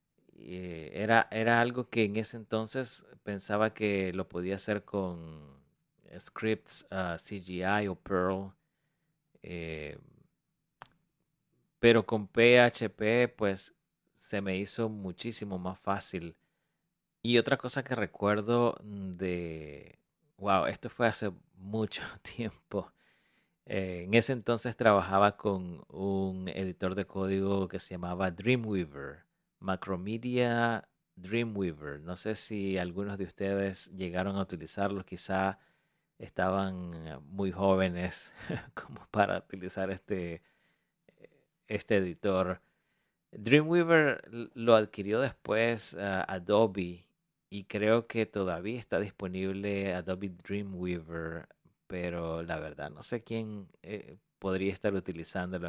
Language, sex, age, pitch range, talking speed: Spanish, male, 30-49, 90-110 Hz, 105 wpm